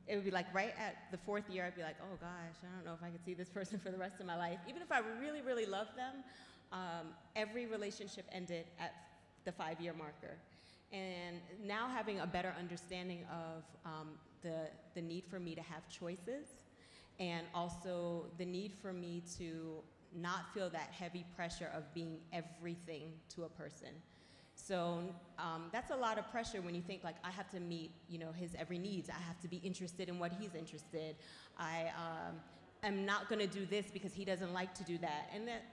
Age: 30-49